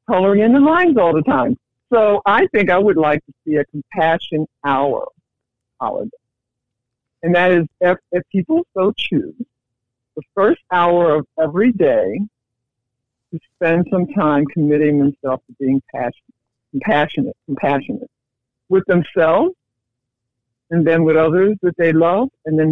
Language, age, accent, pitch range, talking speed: English, 60-79, American, 135-205 Hz, 145 wpm